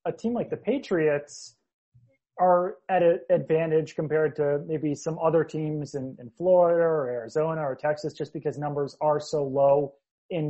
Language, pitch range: English, 145-175 Hz